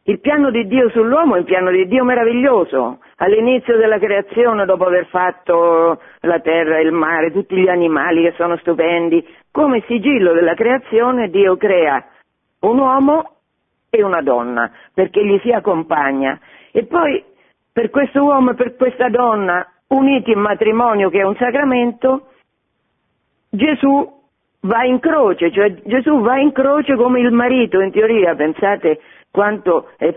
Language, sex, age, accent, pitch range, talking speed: Italian, female, 50-69, native, 180-250 Hz, 150 wpm